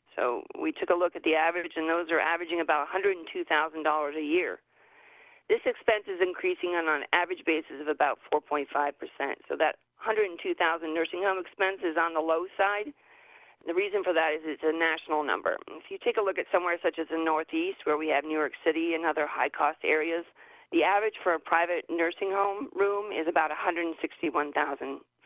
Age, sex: 40-59, female